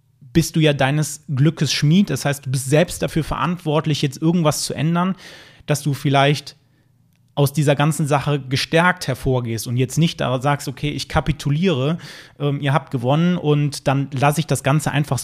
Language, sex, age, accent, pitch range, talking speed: German, male, 30-49, German, 130-155 Hz, 175 wpm